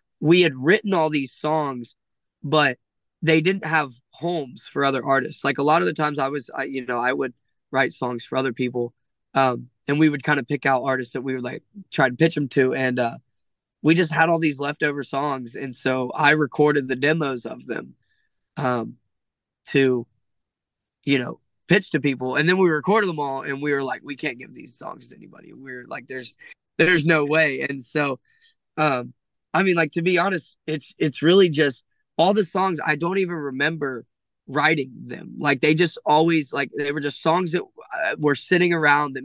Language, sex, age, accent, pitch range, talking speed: English, male, 20-39, American, 130-160 Hz, 205 wpm